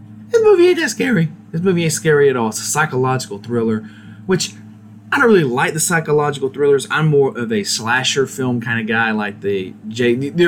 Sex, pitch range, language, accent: male, 105-150 Hz, English, American